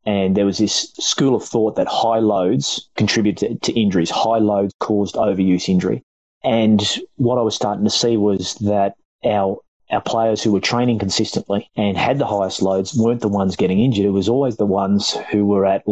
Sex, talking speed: male, 195 wpm